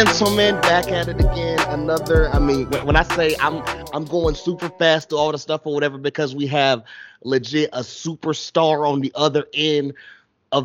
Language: English